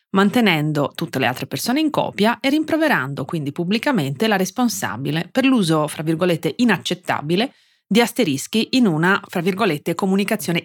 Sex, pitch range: female, 165-225 Hz